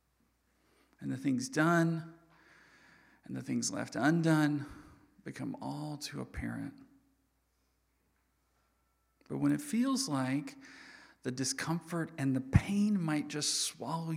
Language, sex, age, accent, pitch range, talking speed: English, male, 40-59, American, 130-165 Hz, 110 wpm